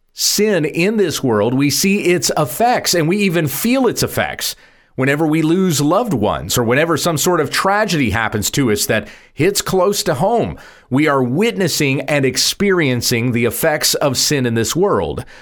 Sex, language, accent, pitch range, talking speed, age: male, English, American, 125-175 Hz, 175 wpm, 40-59